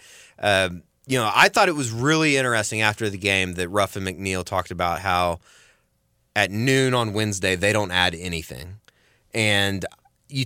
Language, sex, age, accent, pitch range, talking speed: English, male, 30-49, American, 95-130 Hz, 165 wpm